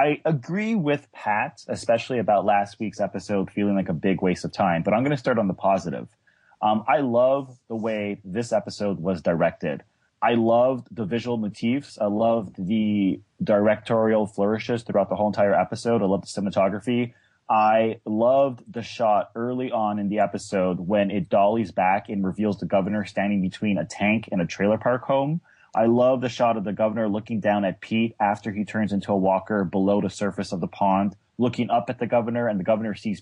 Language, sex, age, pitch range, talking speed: English, male, 30-49, 100-120 Hz, 200 wpm